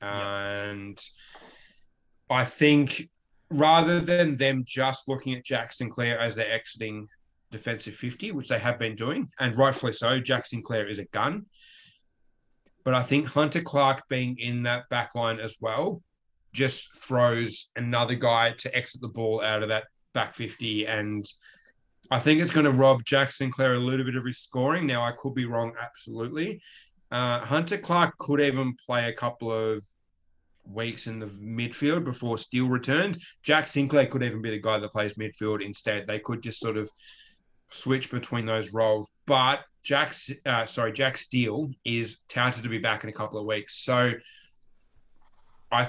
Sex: male